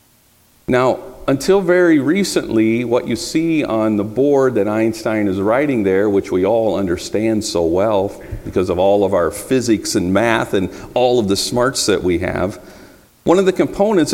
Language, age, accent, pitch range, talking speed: English, 50-69, American, 105-145 Hz, 175 wpm